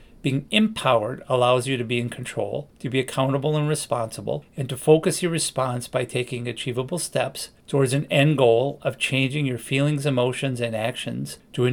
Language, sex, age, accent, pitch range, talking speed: English, male, 40-59, American, 120-145 Hz, 180 wpm